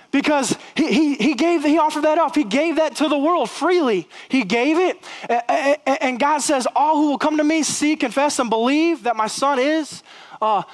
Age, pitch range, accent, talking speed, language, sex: 20-39, 245-305 Hz, American, 205 wpm, English, male